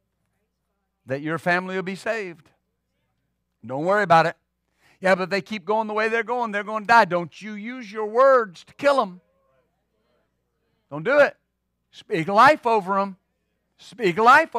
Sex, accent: male, American